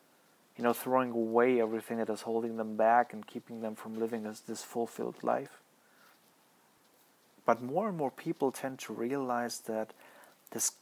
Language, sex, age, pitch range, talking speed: German, male, 30-49, 115-150 Hz, 160 wpm